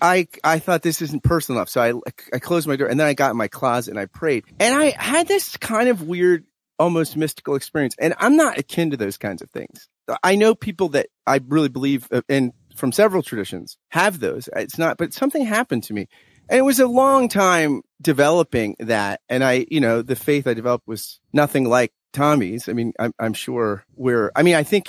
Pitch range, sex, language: 115-180 Hz, male, English